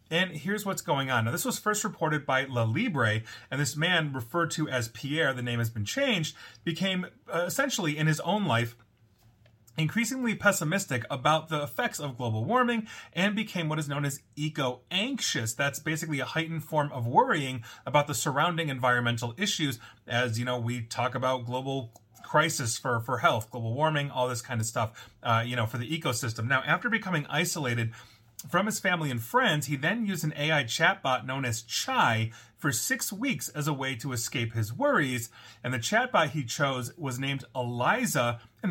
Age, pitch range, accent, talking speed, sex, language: 30-49, 120-160 Hz, American, 185 wpm, male, English